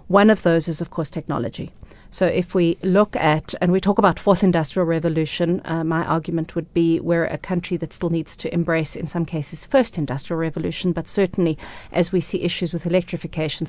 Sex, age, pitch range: female, 40-59, 160-185 Hz